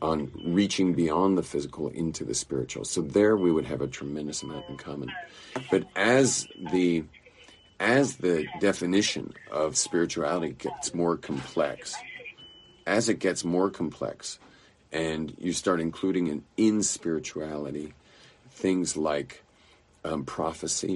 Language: English